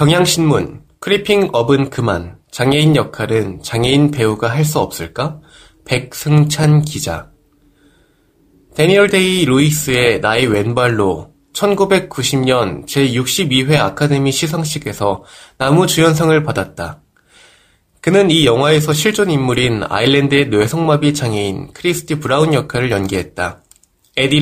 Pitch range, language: 115-155 Hz, Korean